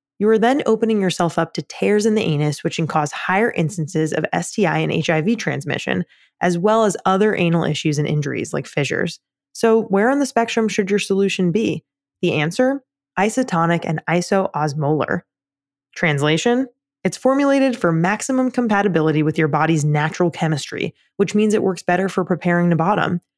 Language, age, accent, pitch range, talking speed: English, 20-39, American, 150-210 Hz, 165 wpm